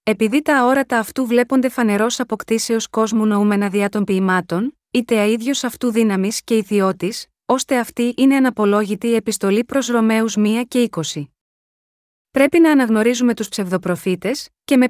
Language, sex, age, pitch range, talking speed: Greek, female, 30-49, 205-250 Hz, 145 wpm